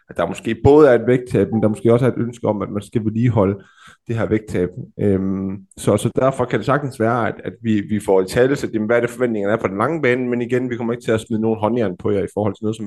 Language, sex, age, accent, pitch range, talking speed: Danish, male, 20-39, native, 110-130 Hz, 300 wpm